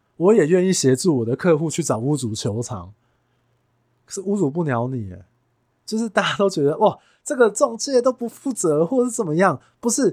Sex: male